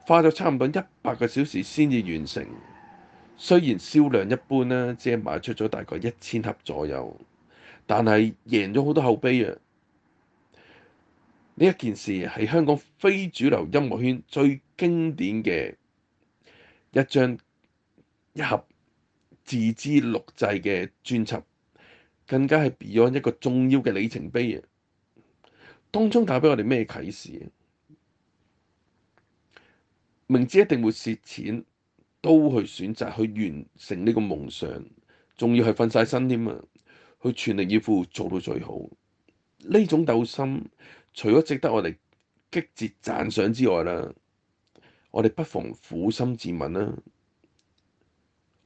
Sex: male